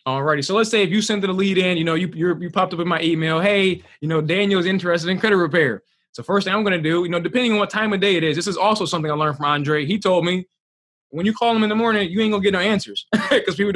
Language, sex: English, male